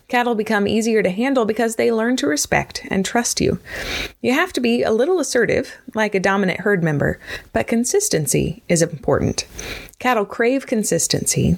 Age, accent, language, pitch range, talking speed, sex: 30-49, American, English, 185-255 Hz, 165 wpm, female